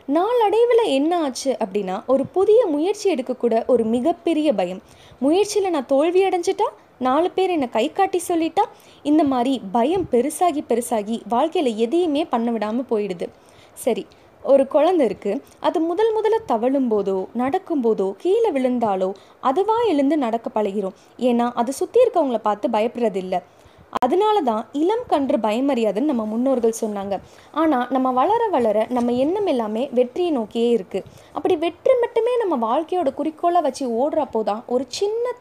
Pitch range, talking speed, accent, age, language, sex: 230-350 Hz, 130 wpm, native, 20-39, Tamil, female